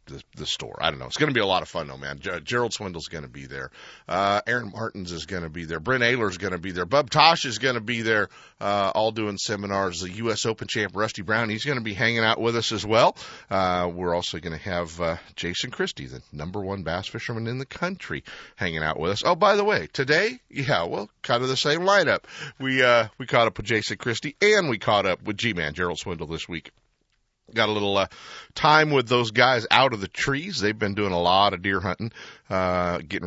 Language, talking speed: English, 245 wpm